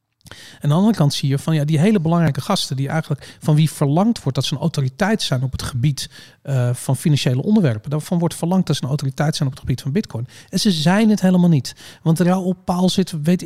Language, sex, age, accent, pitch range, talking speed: Dutch, male, 40-59, Dutch, 140-185 Hz, 250 wpm